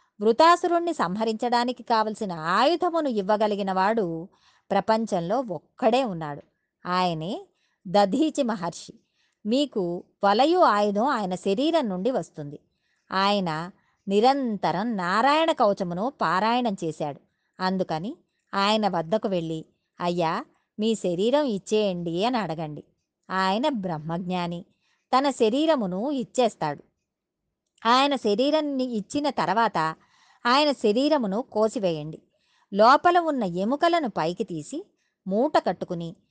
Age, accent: 20-39, native